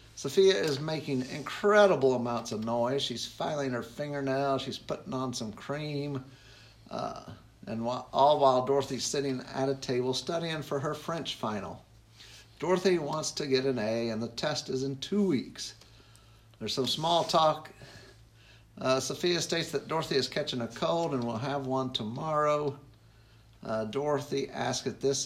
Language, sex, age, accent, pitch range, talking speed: English, male, 50-69, American, 115-150 Hz, 155 wpm